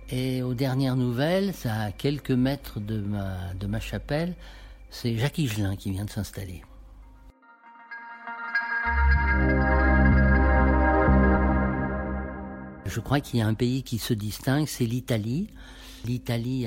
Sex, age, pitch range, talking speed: male, 60-79, 105-135 Hz, 115 wpm